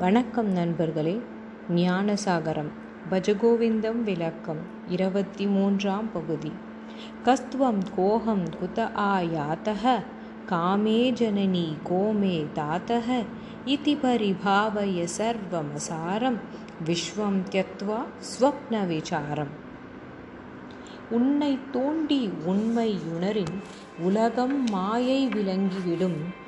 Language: Tamil